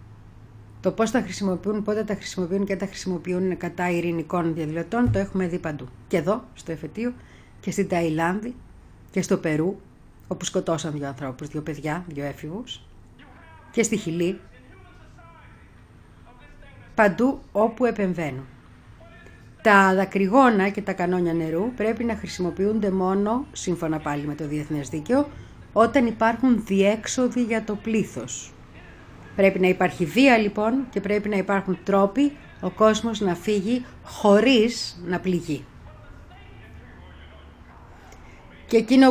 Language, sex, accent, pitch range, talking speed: Greek, female, native, 155-215 Hz, 125 wpm